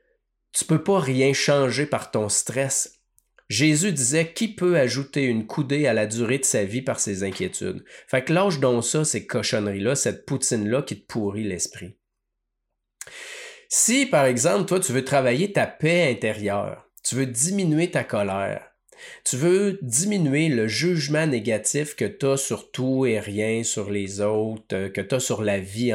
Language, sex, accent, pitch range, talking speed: French, male, Canadian, 110-155 Hz, 175 wpm